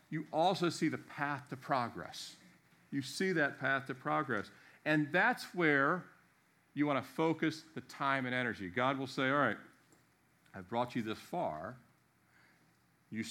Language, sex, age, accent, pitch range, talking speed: English, male, 50-69, American, 125-155 Hz, 160 wpm